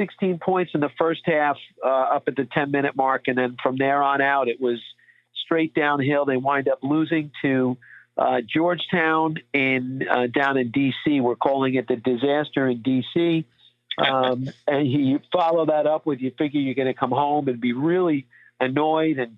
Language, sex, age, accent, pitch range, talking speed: English, male, 50-69, American, 130-160 Hz, 185 wpm